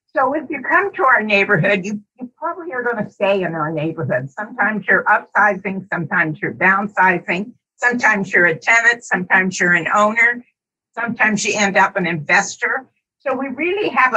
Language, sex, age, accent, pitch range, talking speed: English, female, 60-79, American, 185-235 Hz, 175 wpm